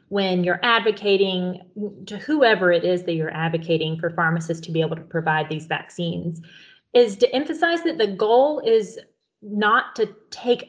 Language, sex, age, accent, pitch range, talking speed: English, female, 30-49, American, 180-220 Hz, 165 wpm